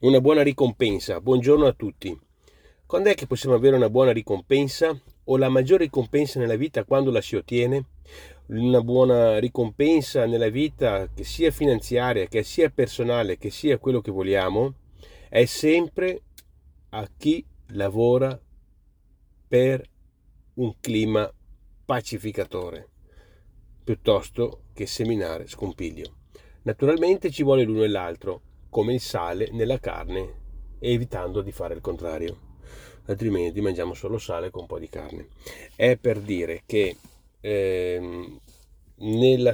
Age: 40-59